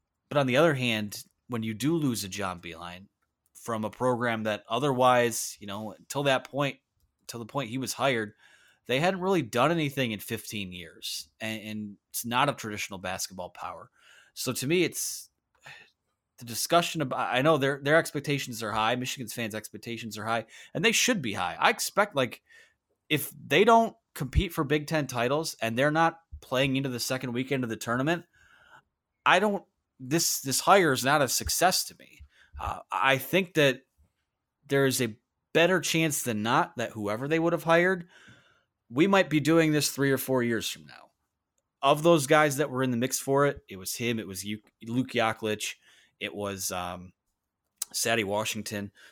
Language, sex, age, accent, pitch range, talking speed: English, male, 30-49, American, 105-145 Hz, 185 wpm